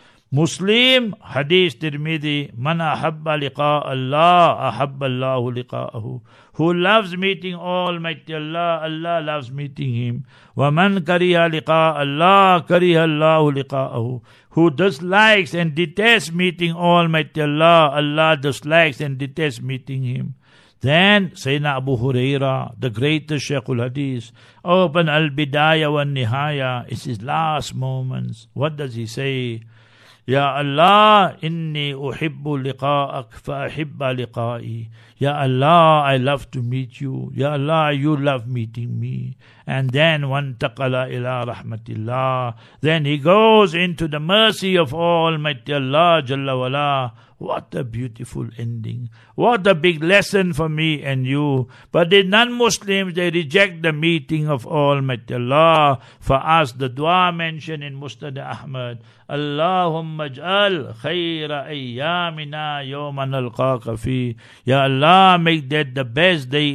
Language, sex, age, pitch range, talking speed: English, male, 60-79, 130-165 Hz, 130 wpm